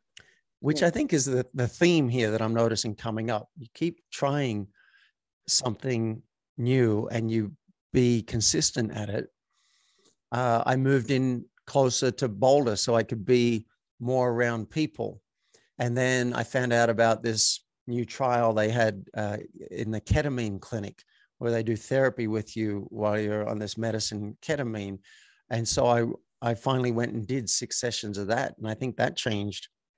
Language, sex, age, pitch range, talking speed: English, male, 50-69, 110-135 Hz, 165 wpm